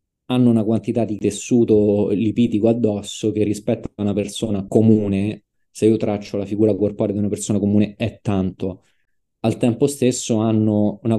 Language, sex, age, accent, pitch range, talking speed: Italian, male, 20-39, native, 100-115 Hz, 160 wpm